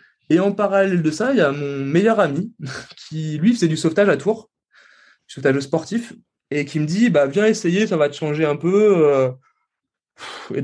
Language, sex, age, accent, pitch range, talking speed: French, male, 20-39, French, 140-180 Hz, 195 wpm